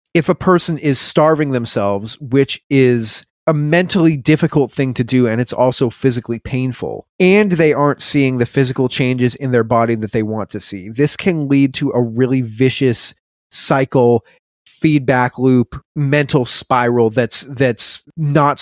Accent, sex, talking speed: American, male, 160 wpm